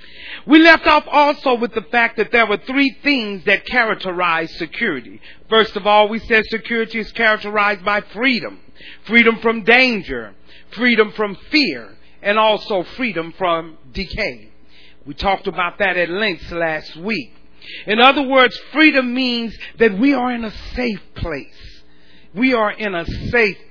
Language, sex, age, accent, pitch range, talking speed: English, male, 40-59, American, 190-245 Hz, 155 wpm